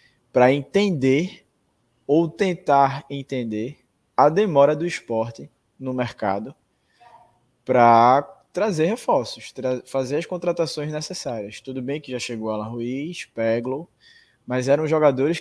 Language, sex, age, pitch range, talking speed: Portuguese, male, 20-39, 120-155 Hz, 115 wpm